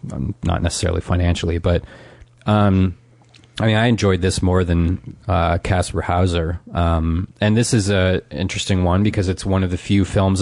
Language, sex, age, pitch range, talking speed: English, male, 30-49, 90-115 Hz, 175 wpm